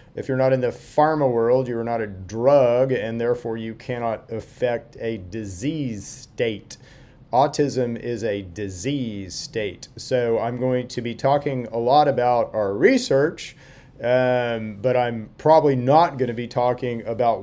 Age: 40-59